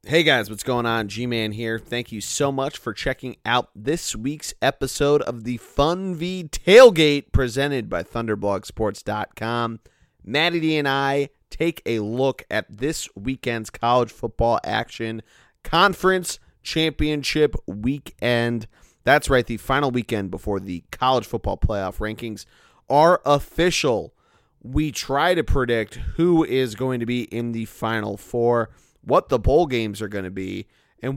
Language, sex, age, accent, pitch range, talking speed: English, male, 30-49, American, 110-145 Hz, 145 wpm